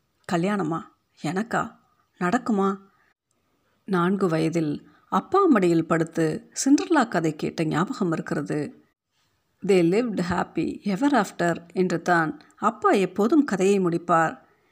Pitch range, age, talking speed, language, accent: 175-220 Hz, 50-69, 95 wpm, Tamil, native